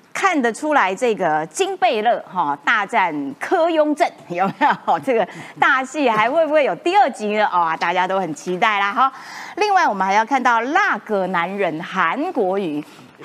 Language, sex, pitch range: Chinese, female, 195-280 Hz